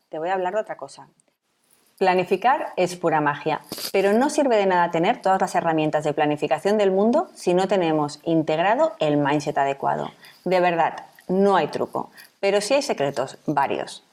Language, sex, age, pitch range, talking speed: Spanish, female, 30-49, 155-210 Hz, 175 wpm